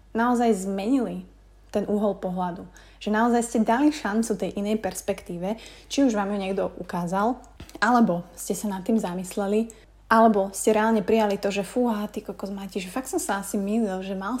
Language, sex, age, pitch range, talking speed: Slovak, female, 20-39, 190-225 Hz, 175 wpm